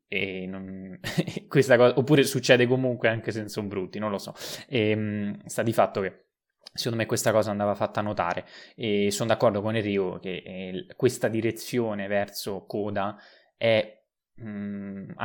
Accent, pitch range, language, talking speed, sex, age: native, 100-115 Hz, Italian, 155 wpm, male, 20-39